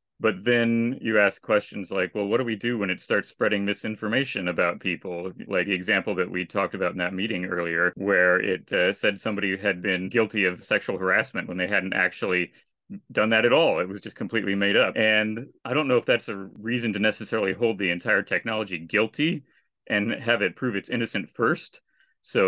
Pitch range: 95-115 Hz